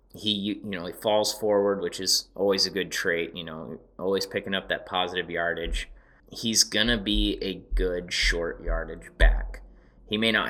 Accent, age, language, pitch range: American, 20-39, English, 90-105 Hz